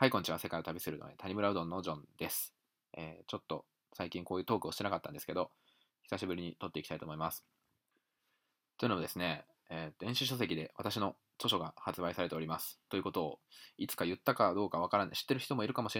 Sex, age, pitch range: male, 20-39, 80-105 Hz